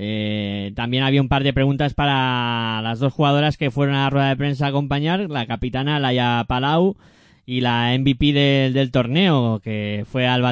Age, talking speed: 20-39, 190 wpm